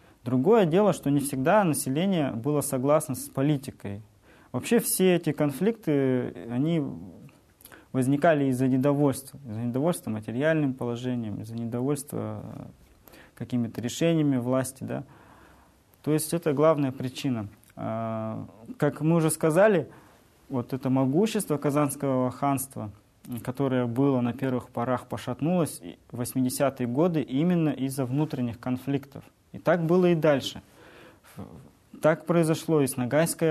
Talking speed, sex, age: 115 wpm, male, 20-39